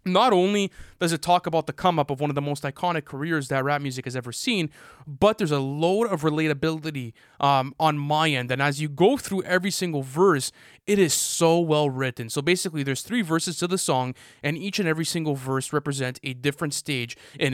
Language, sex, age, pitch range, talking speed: English, male, 20-39, 135-160 Hz, 220 wpm